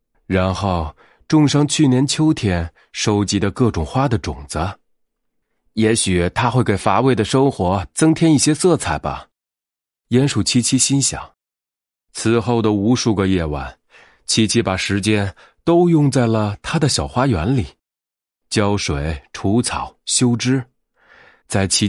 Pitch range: 90-125 Hz